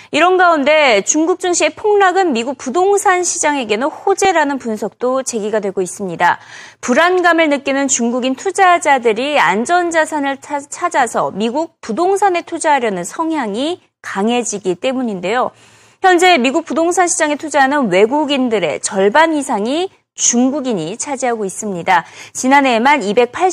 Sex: female